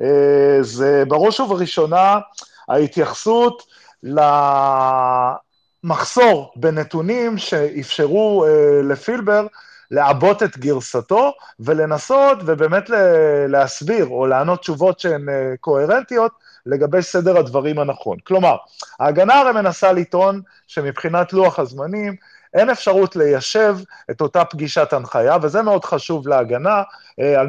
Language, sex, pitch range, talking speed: Hebrew, male, 140-200 Hz, 95 wpm